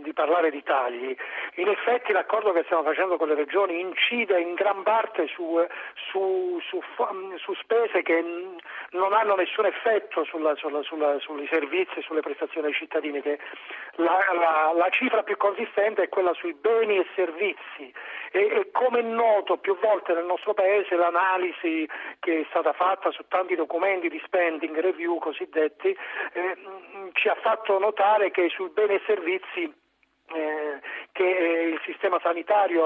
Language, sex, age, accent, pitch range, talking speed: Italian, male, 40-59, native, 165-220 Hz, 145 wpm